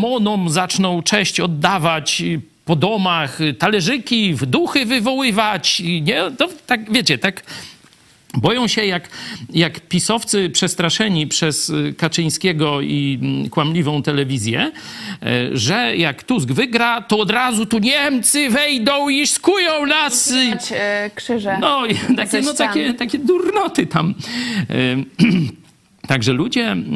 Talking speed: 105 wpm